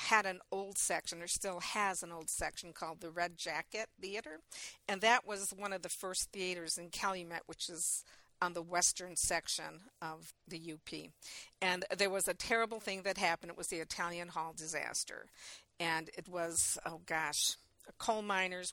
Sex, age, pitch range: female, 50-69, 170-200 Hz